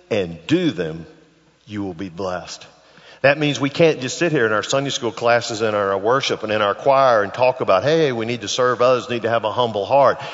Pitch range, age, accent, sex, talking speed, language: 110-145 Hz, 50-69, American, male, 240 wpm, English